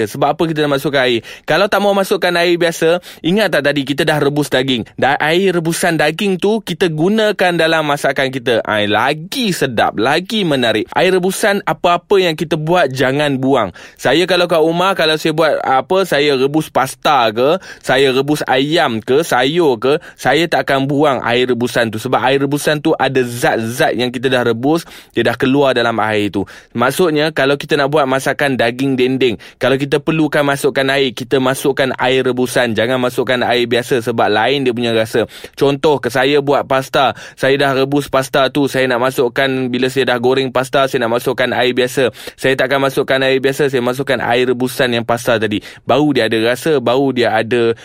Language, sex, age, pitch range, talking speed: Malay, male, 20-39, 125-155 Hz, 190 wpm